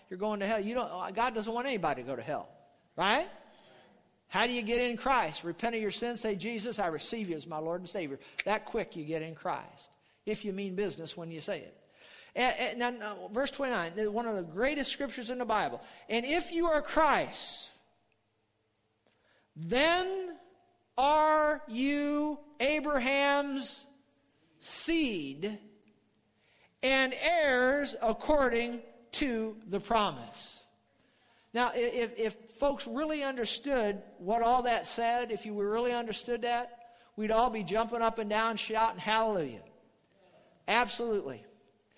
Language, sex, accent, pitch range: English, male, American, 210-275 Hz